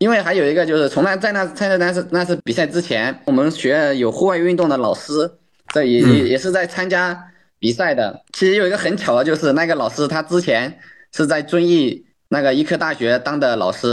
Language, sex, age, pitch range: Chinese, male, 20-39, 120-170 Hz